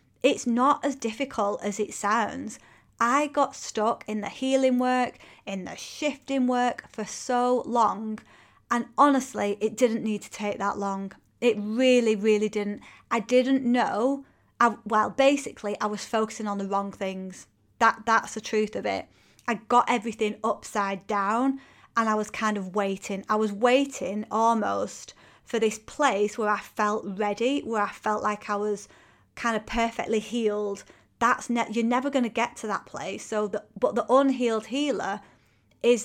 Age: 30-49